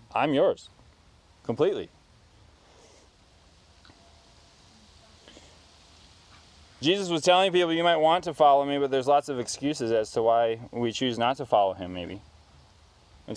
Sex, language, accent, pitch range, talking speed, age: male, English, American, 105-150 Hz, 130 wpm, 20-39